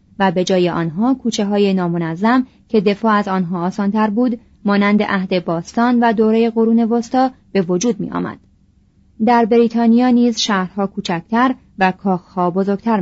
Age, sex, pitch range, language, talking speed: 30-49, female, 180-230 Hz, Persian, 145 wpm